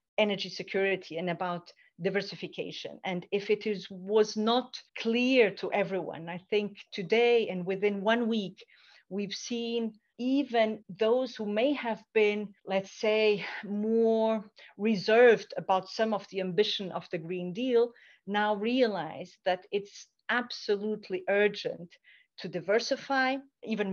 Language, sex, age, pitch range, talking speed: English, female, 40-59, 185-220 Hz, 130 wpm